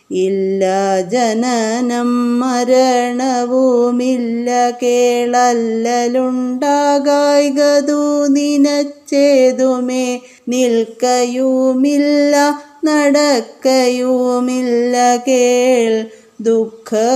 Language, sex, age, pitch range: Malayalam, female, 20-39, 225-260 Hz